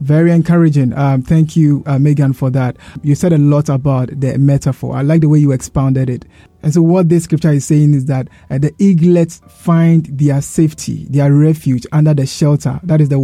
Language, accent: English, Nigerian